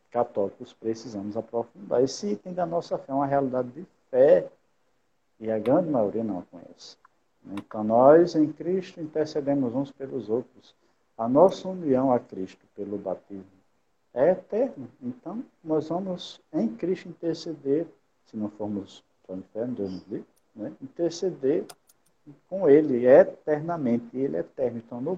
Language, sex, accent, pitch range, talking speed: Portuguese, male, Brazilian, 105-155 Hz, 150 wpm